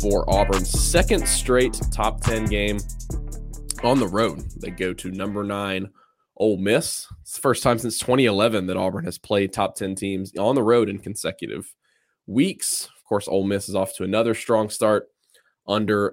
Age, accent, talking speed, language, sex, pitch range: 20-39, American, 175 wpm, English, male, 100-125 Hz